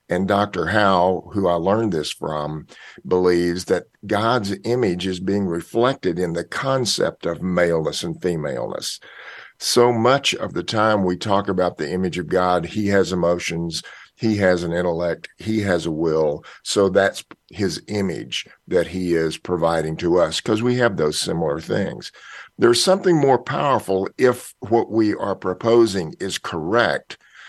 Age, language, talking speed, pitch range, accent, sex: 50-69, English, 155 wpm, 90-115 Hz, American, male